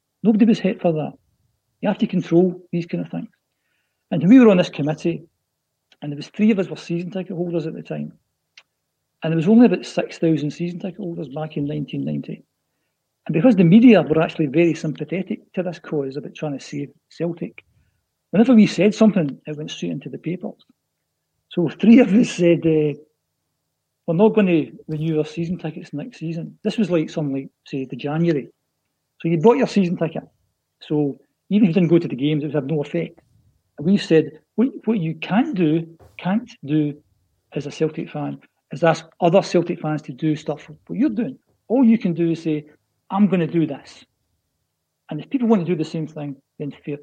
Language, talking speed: English, 210 wpm